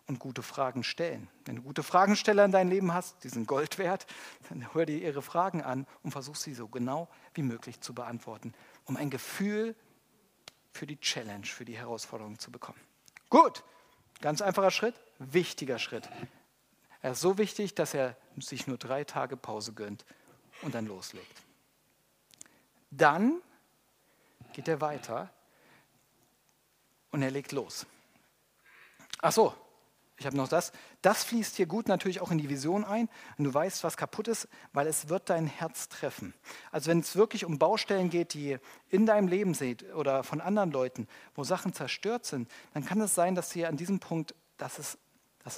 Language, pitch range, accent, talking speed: German, 130-185 Hz, German, 170 wpm